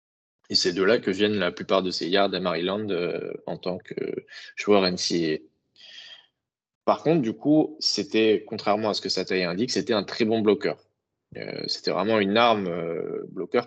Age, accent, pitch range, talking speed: 20-39, French, 95-115 Hz, 190 wpm